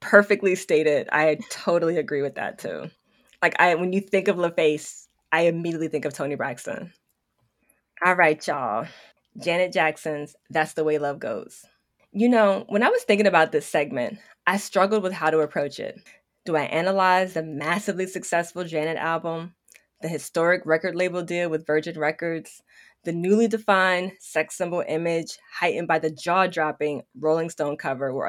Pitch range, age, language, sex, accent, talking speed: 155-200 Hz, 20-39, English, female, American, 160 wpm